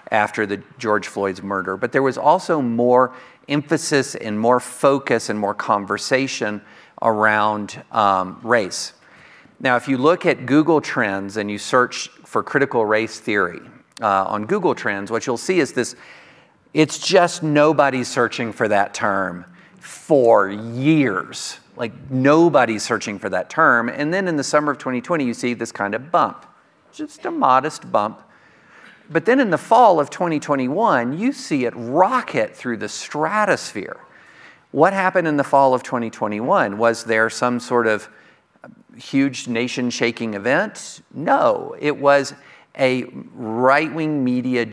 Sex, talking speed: male, 150 wpm